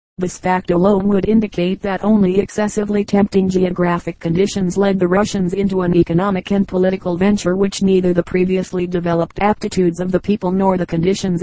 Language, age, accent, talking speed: English, 40-59, American, 170 wpm